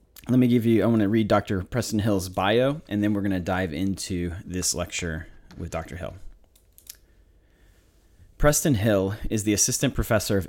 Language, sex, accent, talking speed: English, male, American, 175 wpm